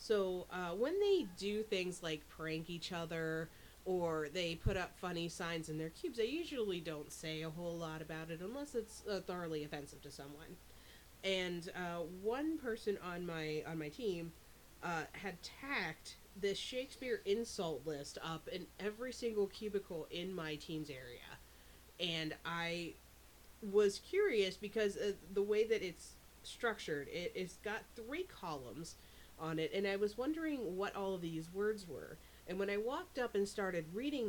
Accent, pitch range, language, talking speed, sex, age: American, 165-215 Hz, English, 170 wpm, female, 30-49